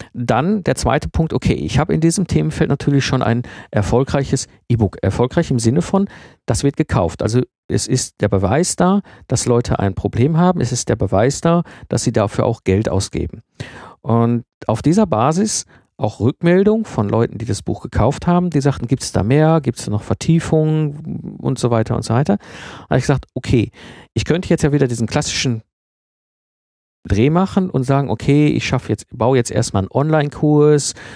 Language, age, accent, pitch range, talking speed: German, 50-69, German, 115-150 Hz, 185 wpm